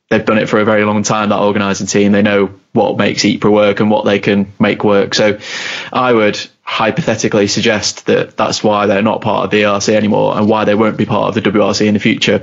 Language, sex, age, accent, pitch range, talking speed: English, male, 20-39, British, 100-110 Hz, 240 wpm